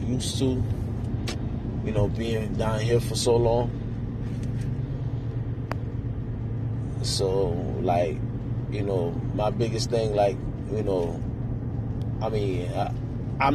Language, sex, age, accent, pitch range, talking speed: English, male, 20-39, American, 105-125 Hz, 95 wpm